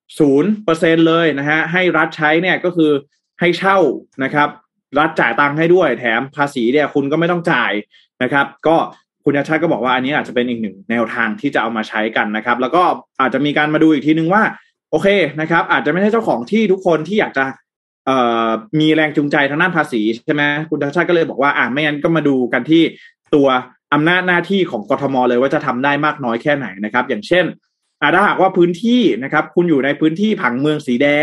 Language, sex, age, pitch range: Thai, male, 20-39, 130-170 Hz